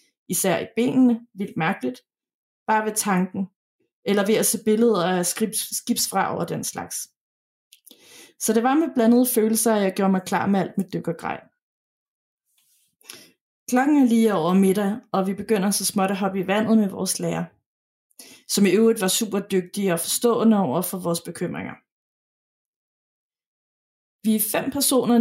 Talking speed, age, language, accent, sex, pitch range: 170 wpm, 20-39, Danish, native, female, 190-230 Hz